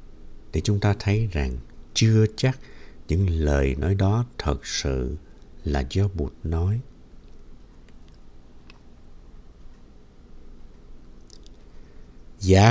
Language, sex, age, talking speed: Vietnamese, male, 60-79, 85 wpm